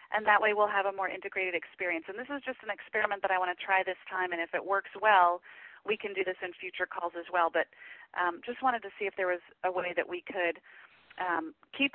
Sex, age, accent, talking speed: female, 30-49, American, 260 wpm